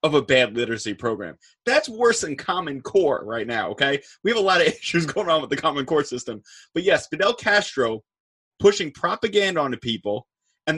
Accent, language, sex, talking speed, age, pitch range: American, English, male, 195 wpm, 30-49, 125-180 Hz